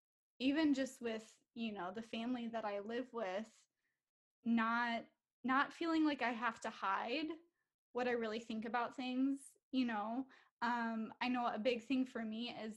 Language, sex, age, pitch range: English, female, 10-29, 220-255 Hz